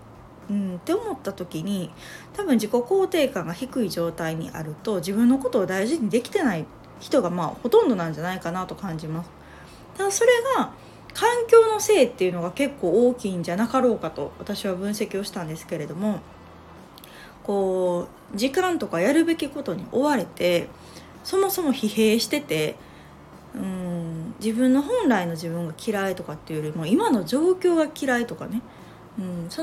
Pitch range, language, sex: 175-260 Hz, Japanese, female